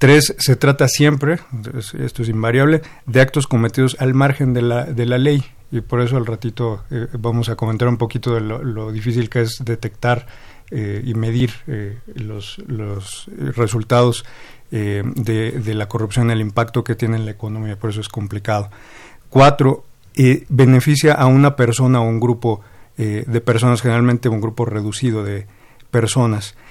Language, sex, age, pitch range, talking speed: Spanish, male, 50-69, 115-130 Hz, 170 wpm